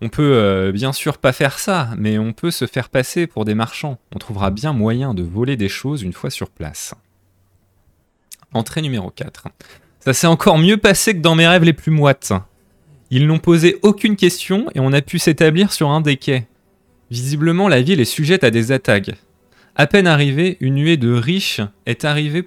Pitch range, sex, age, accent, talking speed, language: 110-160 Hz, male, 20-39, French, 200 wpm, French